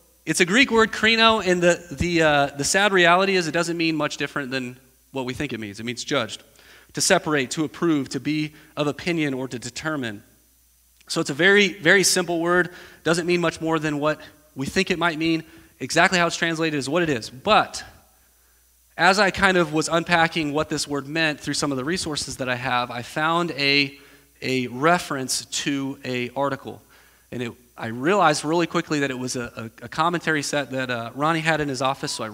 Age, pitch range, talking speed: 30-49, 125-165 Hz, 210 wpm